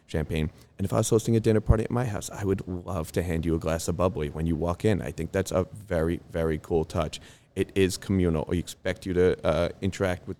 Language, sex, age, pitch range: English, male, 30-49, 80-100 Hz